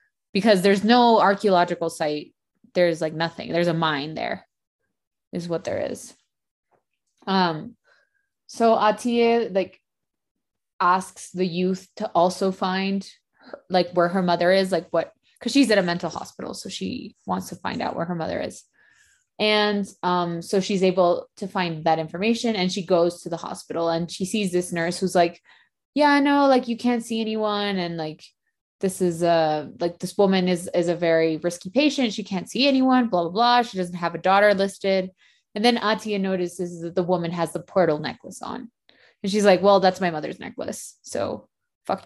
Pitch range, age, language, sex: 175-220 Hz, 20-39, English, female